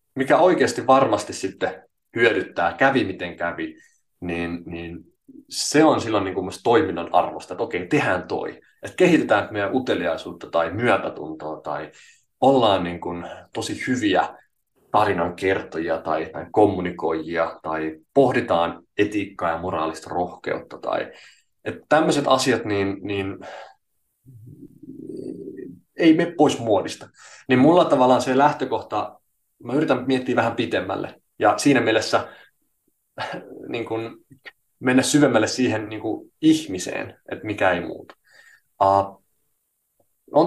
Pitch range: 90-130 Hz